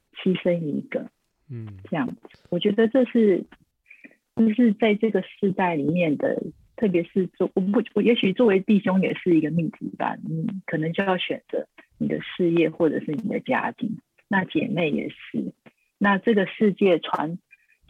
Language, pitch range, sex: Chinese, 165-210 Hz, female